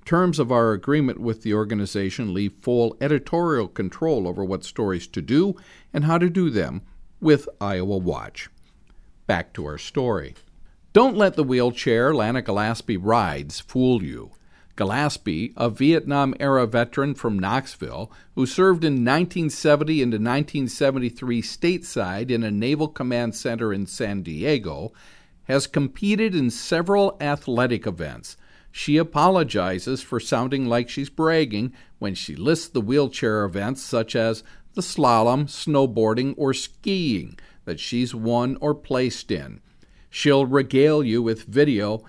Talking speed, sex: 135 wpm, male